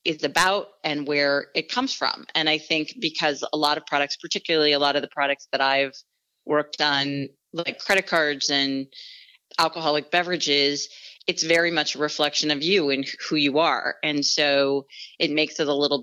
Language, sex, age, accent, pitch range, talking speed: English, female, 30-49, American, 135-155 Hz, 185 wpm